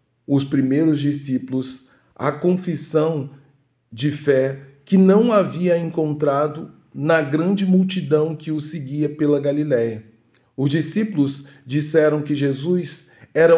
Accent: Brazilian